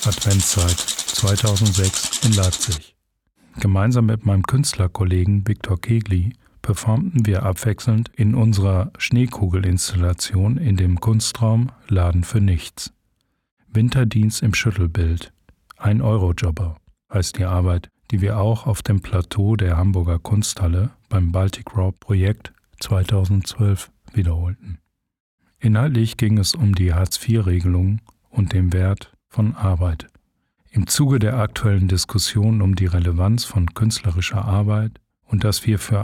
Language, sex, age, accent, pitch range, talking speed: German, male, 40-59, German, 90-110 Hz, 120 wpm